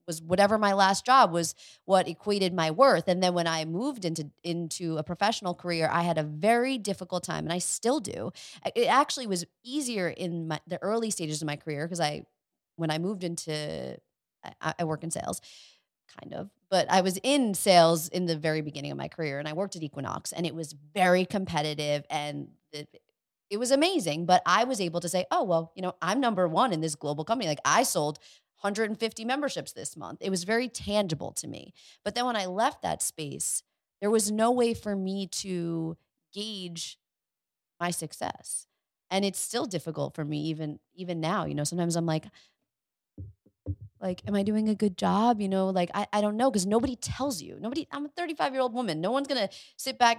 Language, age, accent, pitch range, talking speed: English, 30-49, American, 160-215 Hz, 205 wpm